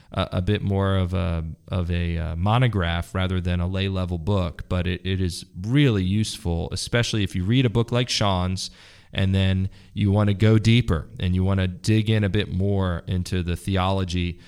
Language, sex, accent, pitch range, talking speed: English, male, American, 90-105 Hz, 200 wpm